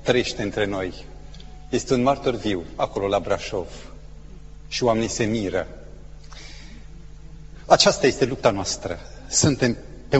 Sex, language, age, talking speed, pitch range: male, Romanian, 40-59, 120 wpm, 115-180 Hz